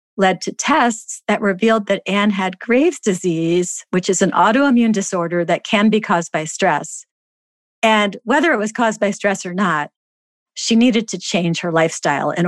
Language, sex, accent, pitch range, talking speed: English, female, American, 175-220 Hz, 180 wpm